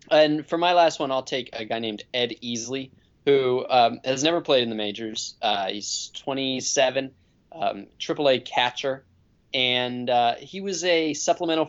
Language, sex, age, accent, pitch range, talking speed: English, male, 20-39, American, 110-145 Hz, 170 wpm